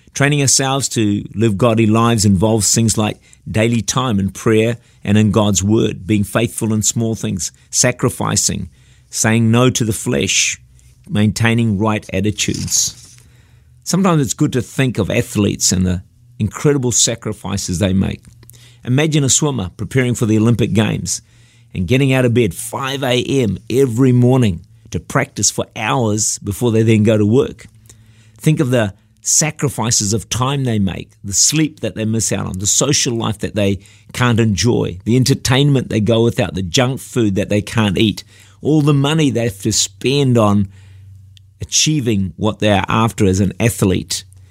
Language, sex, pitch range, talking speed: English, male, 100-120 Hz, 160 wpm